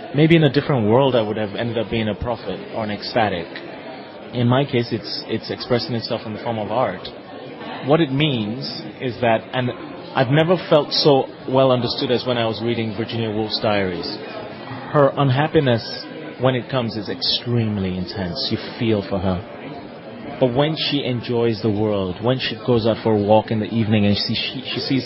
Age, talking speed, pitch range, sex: 30-49, 195 wpm, 110-130 Hz, male